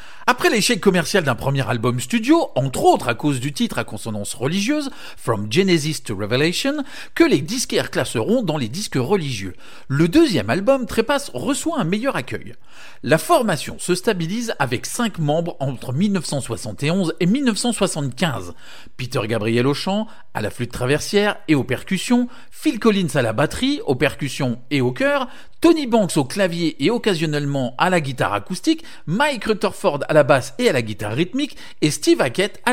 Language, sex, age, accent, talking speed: French, male, 40-59, French, 175 wpm